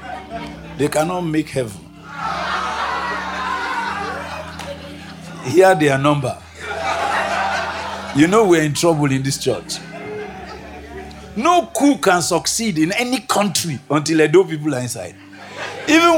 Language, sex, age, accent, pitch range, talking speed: English, male, 50-69, Nigerian, 135-200 Hz, 110 wpm